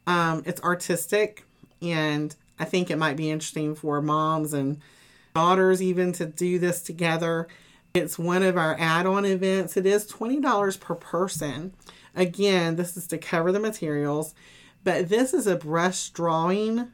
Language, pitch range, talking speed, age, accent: English, 155-185 Hz, 150 wpm, 40-59, American